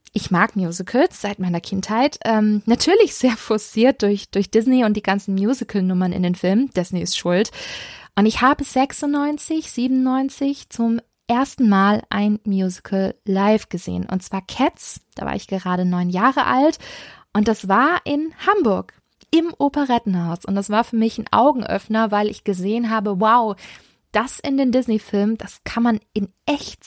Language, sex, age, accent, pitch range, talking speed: German, female, 20-39, German, 200-255 Hz, 165 wpm